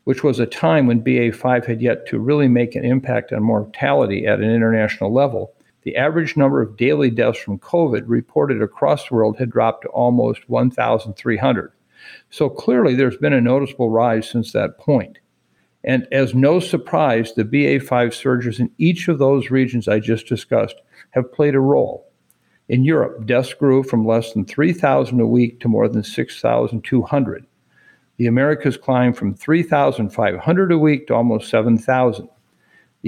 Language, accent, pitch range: English, American, 115-145 Hz